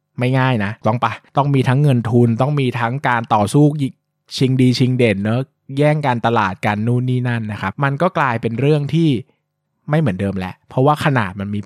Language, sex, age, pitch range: Thai, male, 20-39, 115-150 Hz